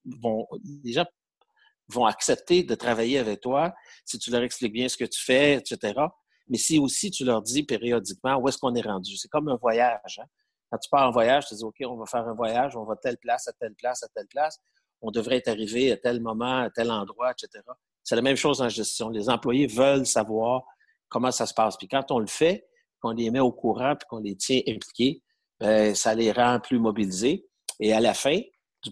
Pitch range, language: 110-140 Hz, French